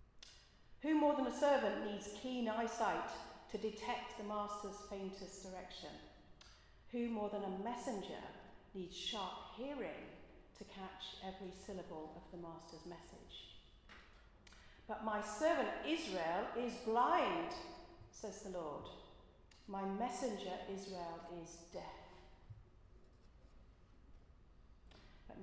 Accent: British